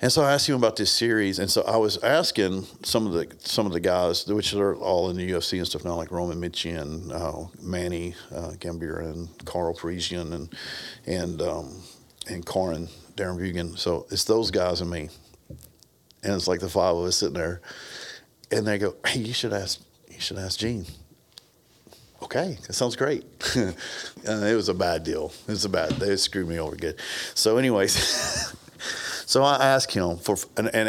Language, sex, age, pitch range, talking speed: English, male, 50-69, 85-105 Hz, 190 wpm